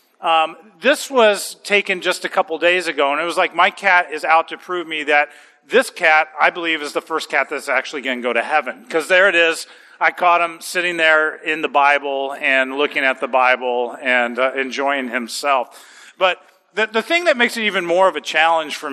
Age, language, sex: 40-59, English, male